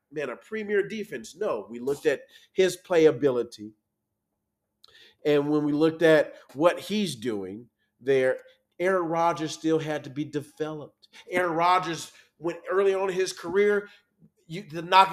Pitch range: 165-205 Hz